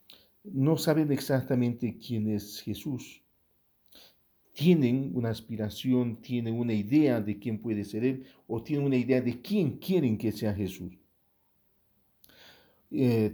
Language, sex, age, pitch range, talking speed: English, male, 50-69, 105-130 Hz, 125 wpm